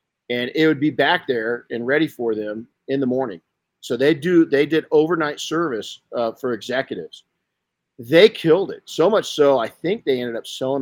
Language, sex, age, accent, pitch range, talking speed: English, male, 50-69, American, 125-155 Hz, 195 wpm